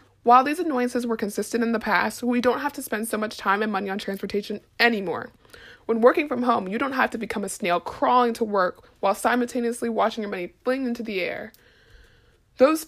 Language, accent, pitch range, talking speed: English, American, 200-250 Hz, 210 wpm